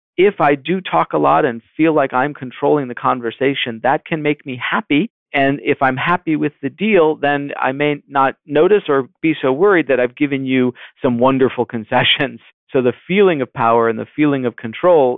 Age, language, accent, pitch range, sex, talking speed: 50-69, English, American, 110-140 Hz, male, 200 wpm